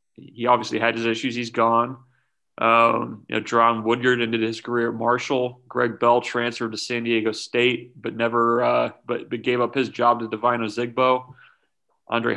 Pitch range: 115-125 Hz